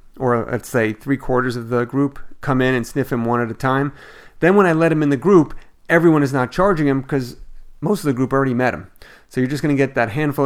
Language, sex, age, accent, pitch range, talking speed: English, male, 40-59, American, 115-140 Hz, 265 wpm